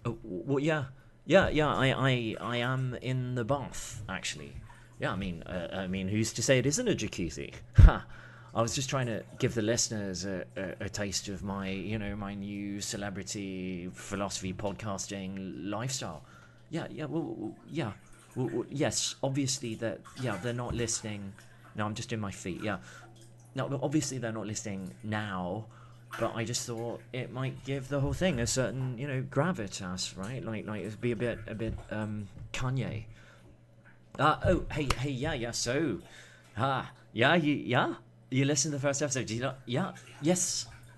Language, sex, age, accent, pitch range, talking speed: English, male, 30-49, British, 110-135 Hz, 180 wpm